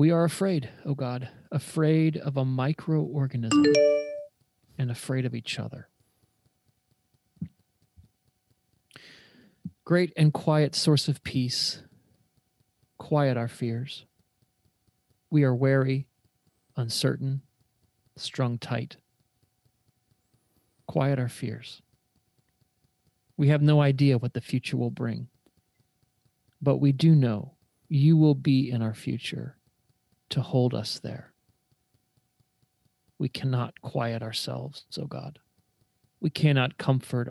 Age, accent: 40-59, American